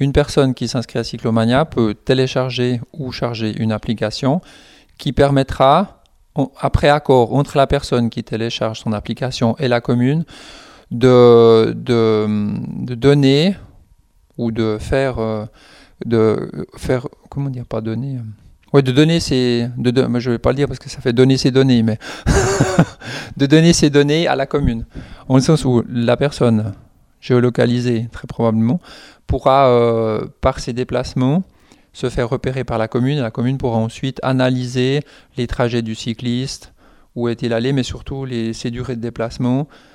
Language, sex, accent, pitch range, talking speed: French, male, French, 115-135 Hz, 160 wpm